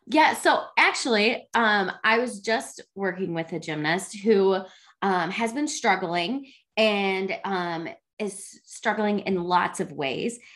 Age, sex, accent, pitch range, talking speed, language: 20-39, female, American, 170-220 Hz, 135 wpm, English